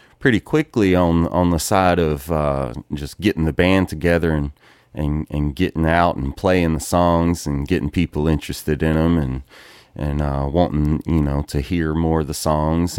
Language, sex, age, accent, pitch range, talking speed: English, male, 30-49, American, 80-95 Hz, 185 wpm